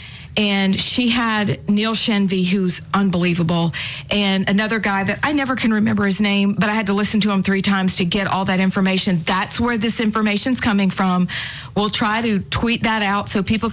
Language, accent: English, American